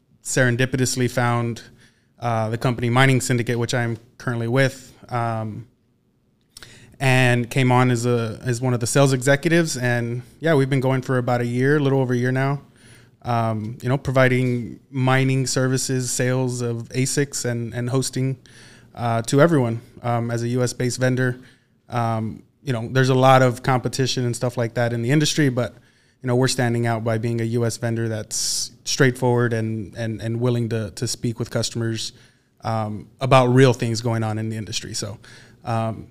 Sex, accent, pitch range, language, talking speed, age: male, American, 115-130 Hz, English, 180 wpm, 20-39